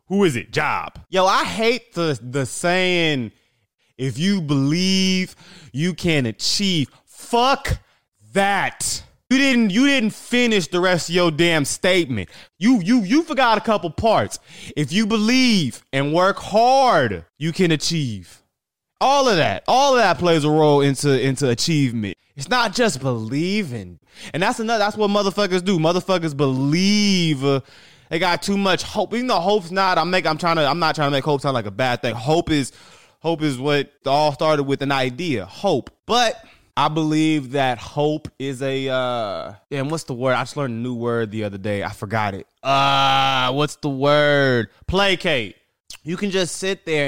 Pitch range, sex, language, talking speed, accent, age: 130-185 Hz, male, English, 180 wpm, American, 20-39